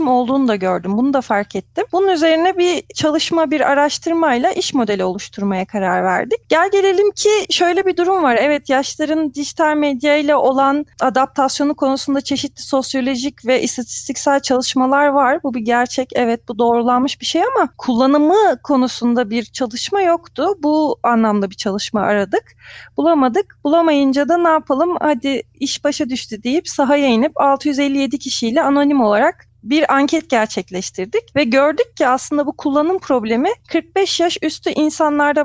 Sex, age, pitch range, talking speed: female, 30-49, 250-330 Hz, 145 wpm